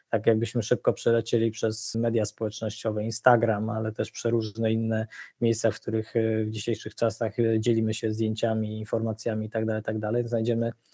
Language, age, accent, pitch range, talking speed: Polish, 20-39, native, 110-120 Hz, 135 wpm